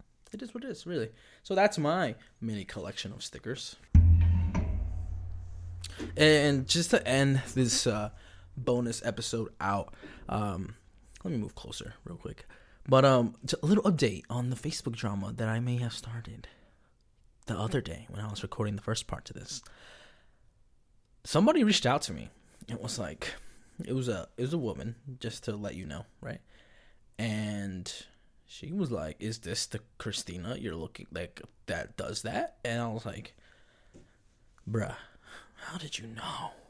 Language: English